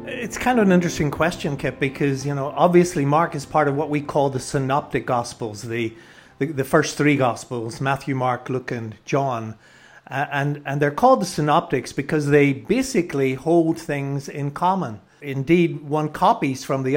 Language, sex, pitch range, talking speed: English, male, 135-160 Hz, 180 wpm